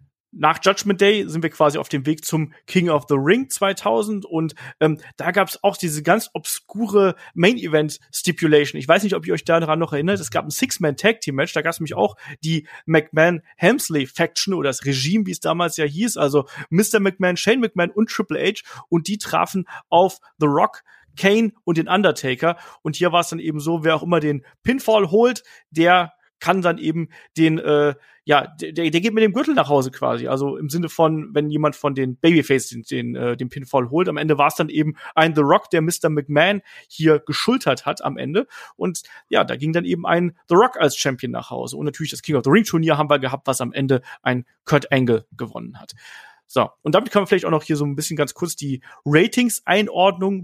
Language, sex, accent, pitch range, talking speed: German, male, German, 150-190 Hz, 215 wpm